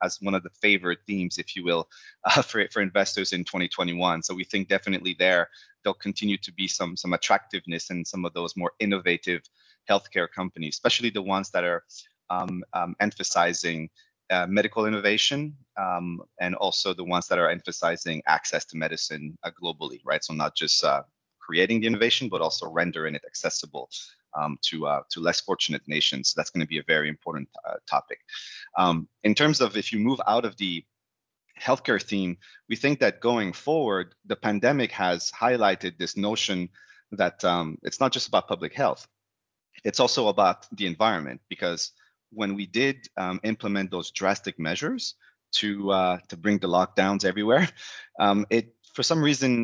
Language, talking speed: English, 175 wpm